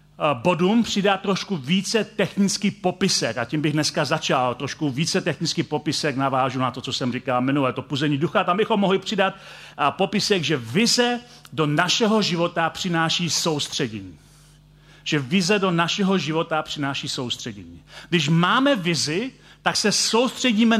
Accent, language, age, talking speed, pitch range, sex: native, Czech, 40-59, 145 wpm, 155-195 Hz, male